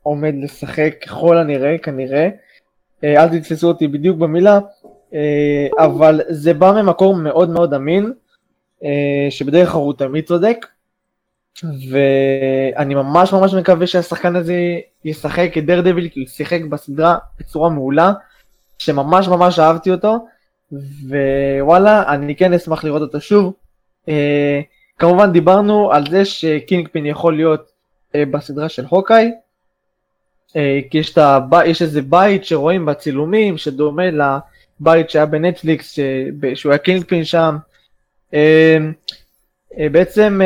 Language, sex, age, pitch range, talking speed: Hebrew, male, 20-39, 150-185 Hz, 115 wpm